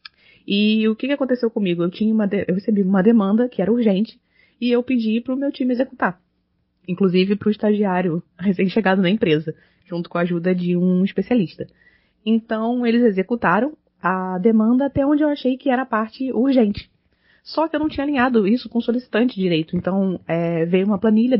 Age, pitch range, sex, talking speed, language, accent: 20-39, 180-230 Hz, female, 180 wpm, Portuguese, Brazilian